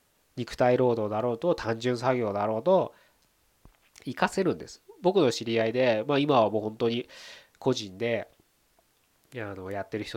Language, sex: Japanese, male